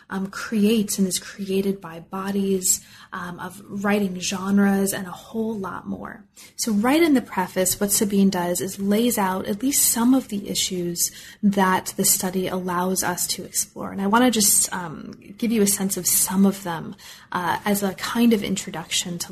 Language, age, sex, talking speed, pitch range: English, 30-49, female, 185 wpm, 185-210 Hz